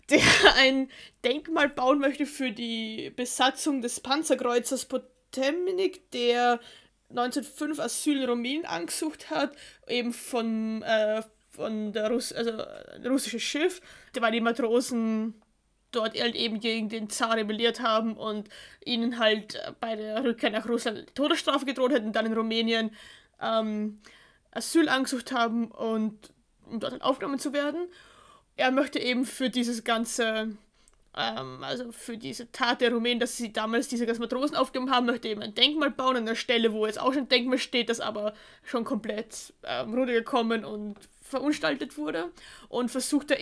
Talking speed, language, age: 150 wpm, German, 20-39